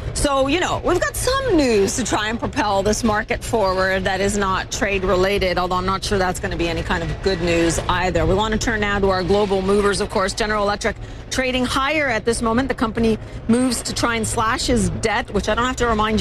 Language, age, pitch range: English, 40-59, 190-250 Hz